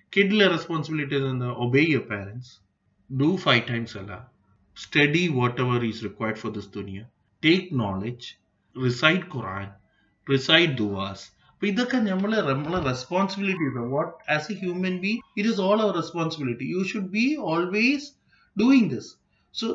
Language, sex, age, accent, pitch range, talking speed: Malayalam, male, 30-49, native, 120-185 Hz, 140 wpm